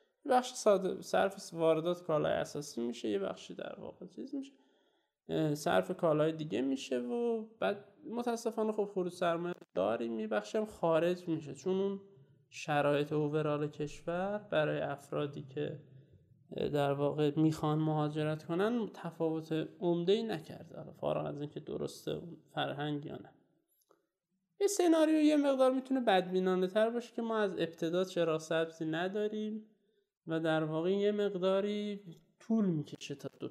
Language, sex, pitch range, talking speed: Persian, male, 155-215 Hz, 130 wpm